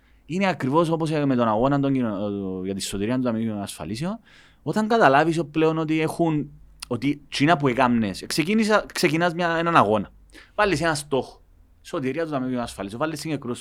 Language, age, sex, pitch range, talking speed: Greek, 30-49, male, 100-155 Hz, 130 wpm